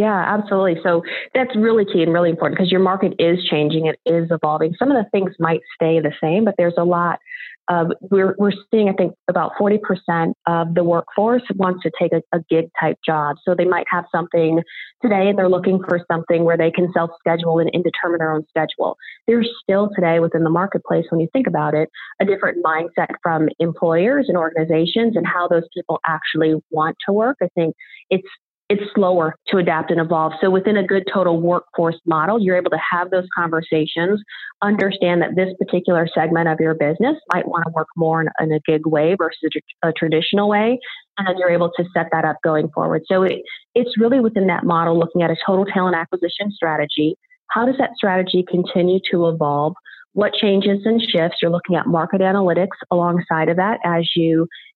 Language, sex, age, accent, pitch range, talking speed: English, female, 30-49, American, 165-195 Hz, 200 wpm